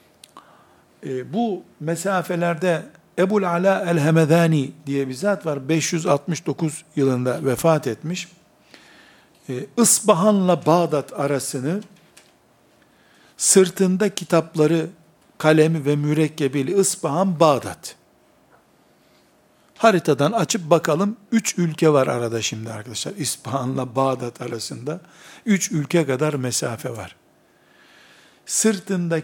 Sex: male